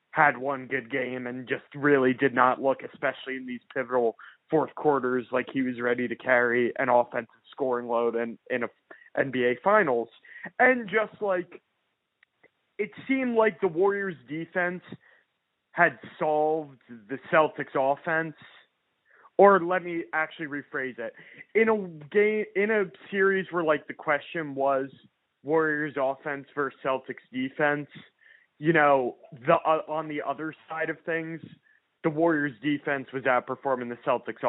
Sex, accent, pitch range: male, American, 125-160 Hz